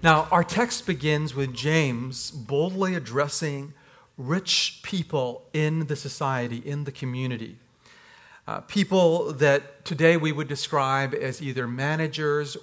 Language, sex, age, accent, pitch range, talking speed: English, male, 40-59, American, 130-165 Hz, 125 wpm